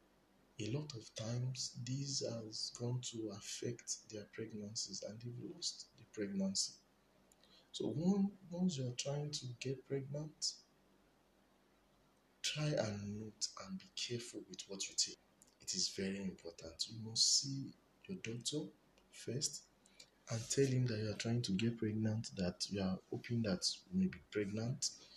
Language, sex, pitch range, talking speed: English, male, 95-120 Hz, 150 wpm